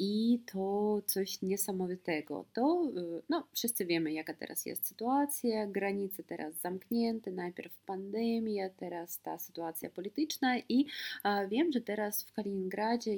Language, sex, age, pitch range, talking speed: Polish, female, 20-39, 160-205 Hz, 125 wpm